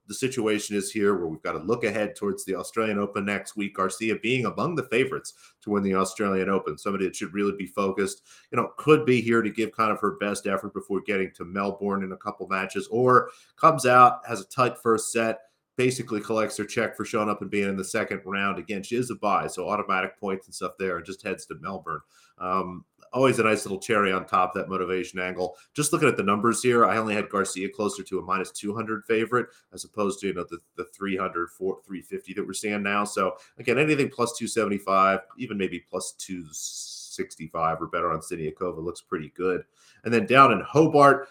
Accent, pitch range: American, 95-115 Hz